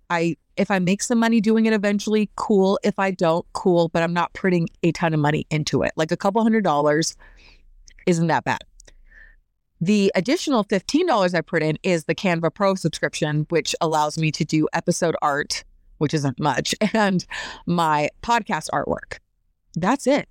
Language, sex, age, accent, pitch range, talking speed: English, female, 30-49, American, 165-210 Hz, 175 wpm